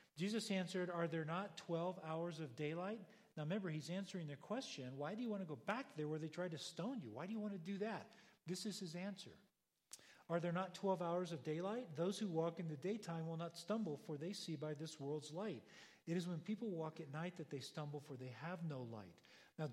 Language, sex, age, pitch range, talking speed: English, male, 40-59, 150-195 Hz, 240 wpm